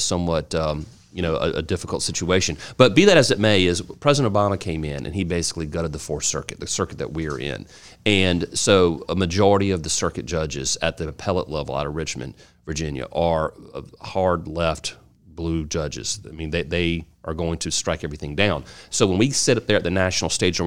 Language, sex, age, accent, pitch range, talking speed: English, male, 40-59, American, 80-100 Hz, 210 wpm